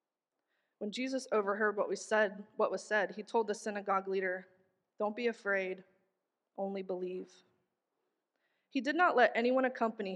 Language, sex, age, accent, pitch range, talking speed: English, female, 20-39, American, 190-230 Hz, 130 wpm